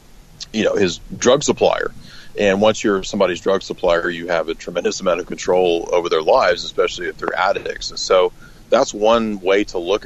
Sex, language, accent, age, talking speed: male, English, American, 40-59, 190 wpm